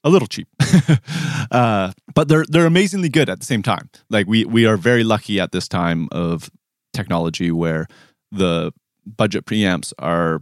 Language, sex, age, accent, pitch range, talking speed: English, male, 30-49, American, 90-115 Hz, 165 wpm